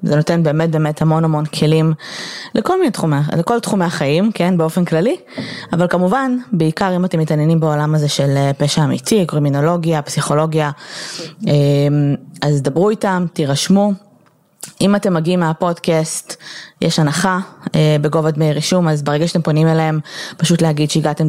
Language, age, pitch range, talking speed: Hebrew, 20-39, 150-180 Hz, 135 wpm